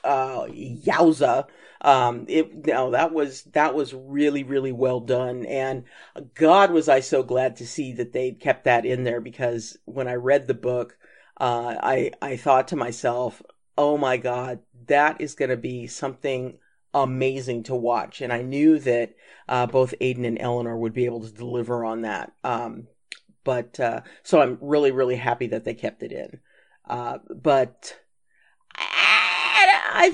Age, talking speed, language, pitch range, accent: 40-59, 170 wpm, English, 125-155 Hz, American